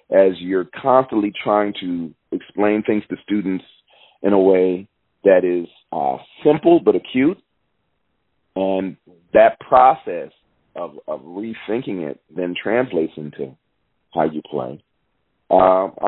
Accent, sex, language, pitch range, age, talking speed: American, male, English, 90-105 Hz, 40-59, 120 wpm